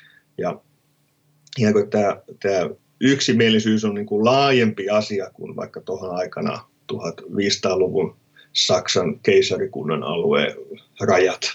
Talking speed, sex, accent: 90 wpm, male, native